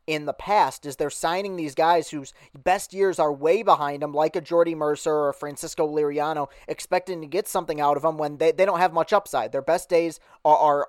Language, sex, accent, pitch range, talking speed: English, male, American, 150-200 Hz, 225 wpm